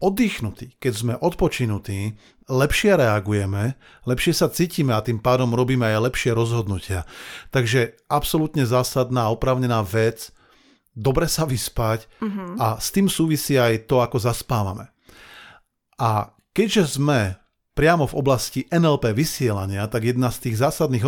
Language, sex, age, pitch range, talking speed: Slovak, male, 40-59, 110-145 Hz, 130 wpm